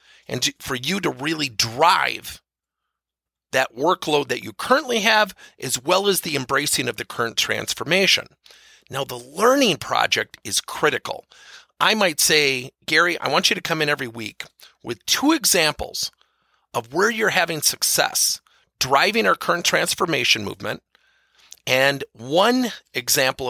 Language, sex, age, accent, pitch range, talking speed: English, male, 50-69, American, 135-225 Hz, 140 wpm